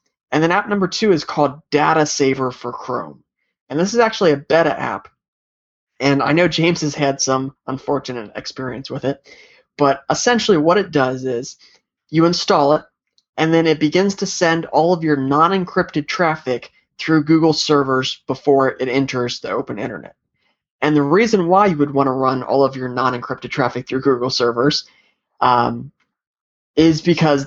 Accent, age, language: American, 30-49, English